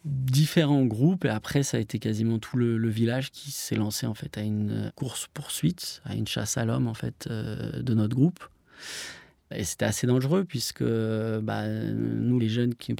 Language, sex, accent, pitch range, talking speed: French, male, French, 110-130 Hz, 195 wpm